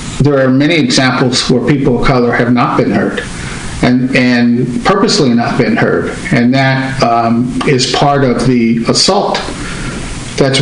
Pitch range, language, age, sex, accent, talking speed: 130-160 Hz, English, 50-69, male, American, 155 wpm